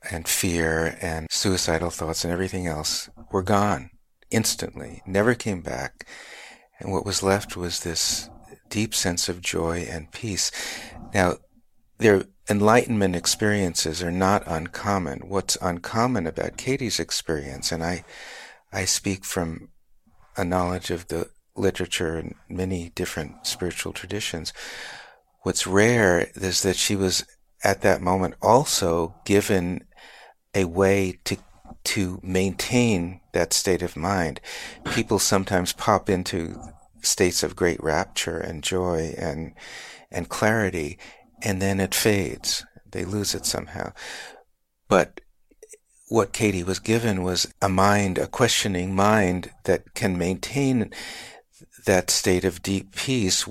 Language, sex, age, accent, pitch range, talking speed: English, male, 50-69, American, 85-100 Hz, 125 wpm